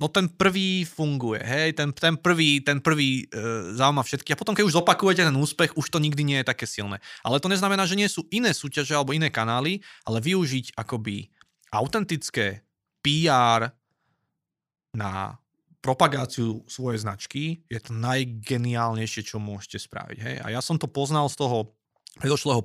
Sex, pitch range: male, 115-165 Hz